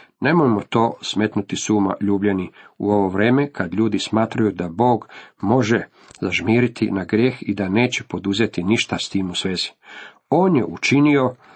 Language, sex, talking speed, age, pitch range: Croatian, male, 150 wpm, 50-69, 100-135 Hz